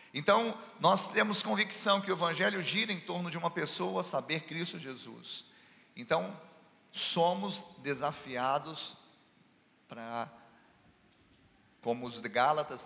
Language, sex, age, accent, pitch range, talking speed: Portuguese, male, 40-59, Brazilian, 130-180 Hz, 110 wpm